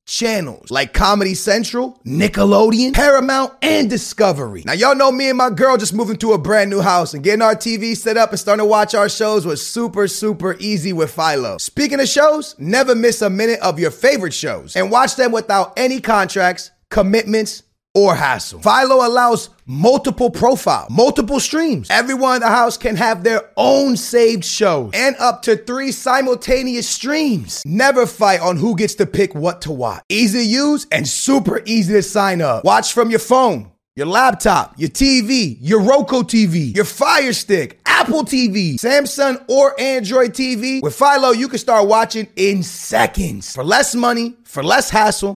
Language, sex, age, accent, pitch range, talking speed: English, male, 30-49, American, 195-255 Hz, 180 wpm